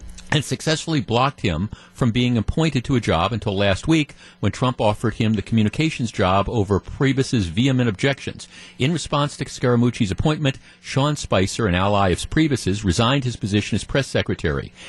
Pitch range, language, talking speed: 100-135 Hz, English, 165 wpm